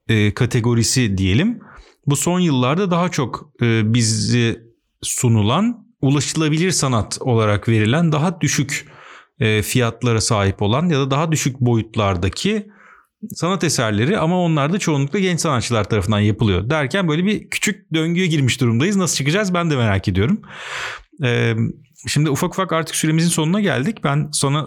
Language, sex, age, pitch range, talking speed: Turkish, male, 40-59, 115-155 Hz, 135 wpm